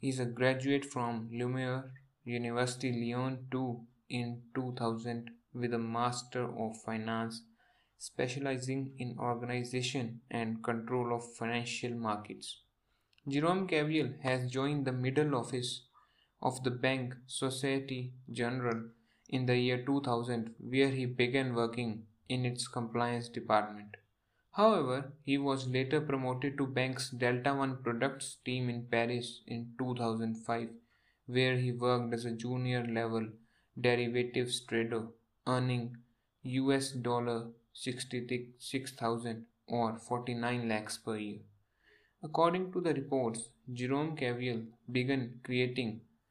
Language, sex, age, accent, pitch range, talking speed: English, male, 20-39, Indian, 115-130 Hz, 115 wpm